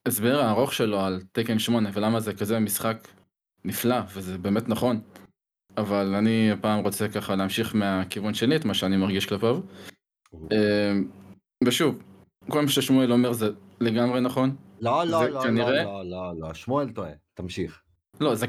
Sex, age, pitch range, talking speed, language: male, 20-39, 100-120 Hz, 150 wpm, Hebrew